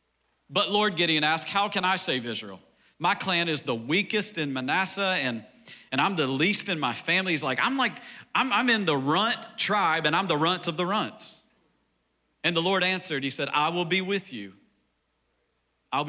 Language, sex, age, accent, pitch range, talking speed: English, male, 40-59, American, 140-215 Hz, 200 wpm